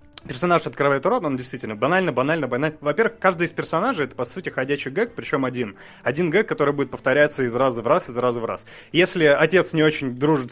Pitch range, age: 130-160 Hz, 30-49